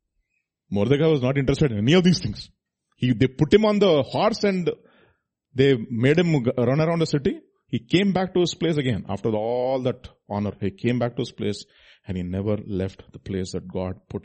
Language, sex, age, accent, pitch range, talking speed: English, male, 30-49, Indian, 110-160 Hz, 210 wpm